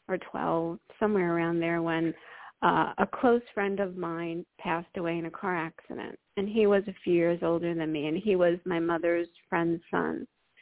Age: 50-69